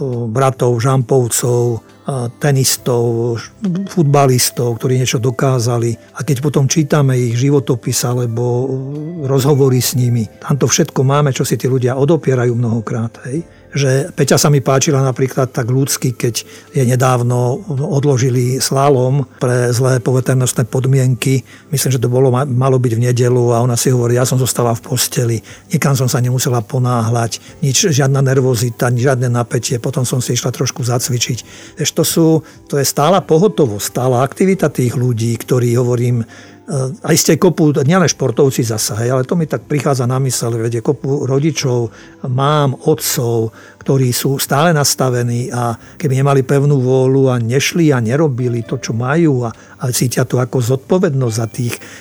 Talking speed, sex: 150 wpm, male